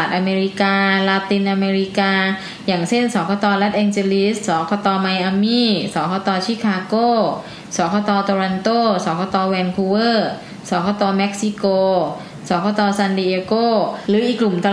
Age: 10-29